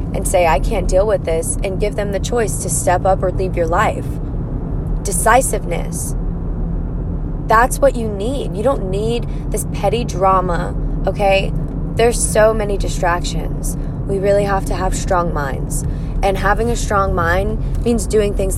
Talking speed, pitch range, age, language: 160 wpm, 185-225 Hz, 20-39, English